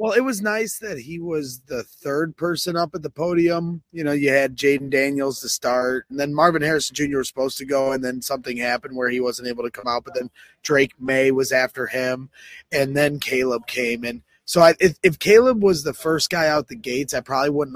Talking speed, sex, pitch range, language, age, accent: 235 wpm, male, 130-165 Hz, English, 30-49, American